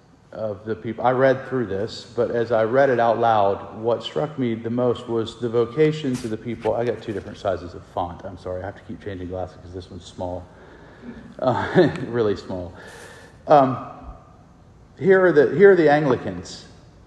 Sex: male